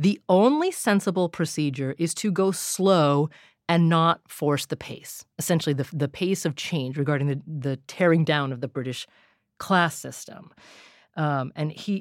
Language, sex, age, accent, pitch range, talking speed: English, female, 30-49, American, 150-215 Hz, 160 wpm